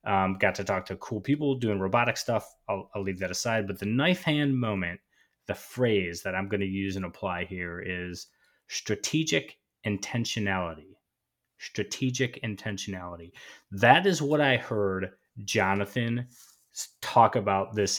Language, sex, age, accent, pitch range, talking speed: English, male, 30-49, American, 95-125 Hz, 145 wpm